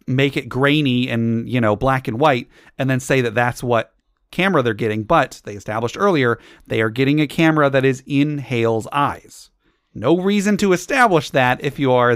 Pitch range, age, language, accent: 115-155 Hz, 30-49, English, American